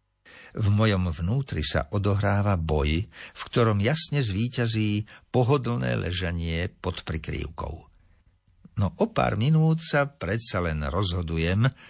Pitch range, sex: 80-110 Hz, male